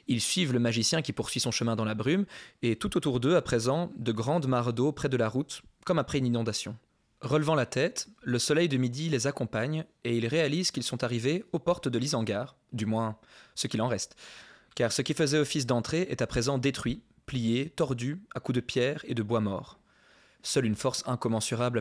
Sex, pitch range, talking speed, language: male, 115-140 Hz, 215 wpm, French